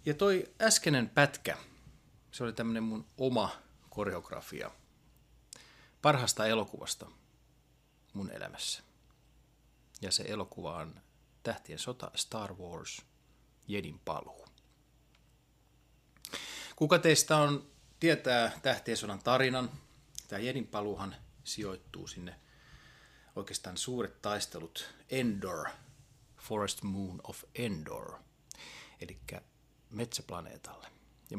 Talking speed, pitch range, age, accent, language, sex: 85 wpm, 105-135 Hz, 30-49, native, Finnish, male